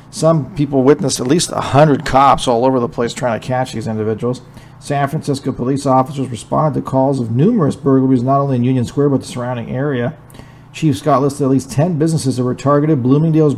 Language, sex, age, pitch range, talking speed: English, male, 50-69, 130-150 Hz, 205 wpm